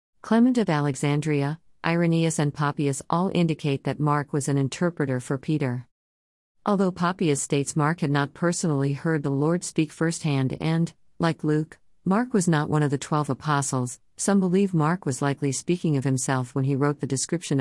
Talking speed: 175 wpm